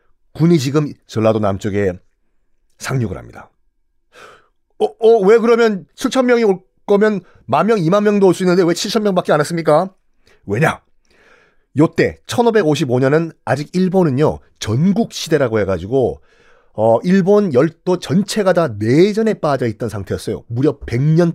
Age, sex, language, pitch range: 40-59, male, Korean, 130-205 Hz